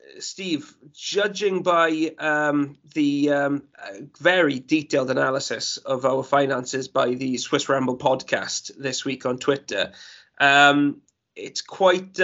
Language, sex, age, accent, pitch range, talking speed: English, male, 20-39, British, 140-160 Hz, 120 wpm